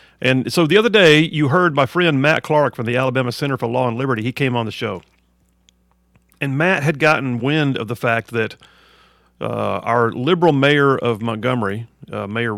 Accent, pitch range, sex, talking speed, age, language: American, 105-135 Hz, male, 195 wpm, 50-69, English